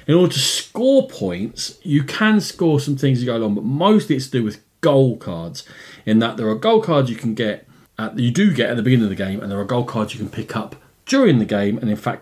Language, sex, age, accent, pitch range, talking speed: English, male, 40-59, British, 110-145 Hz, 275 wpm